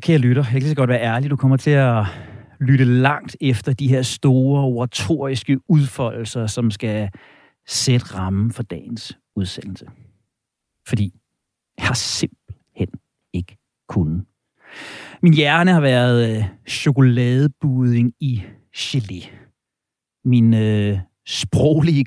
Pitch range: 110-140 Hz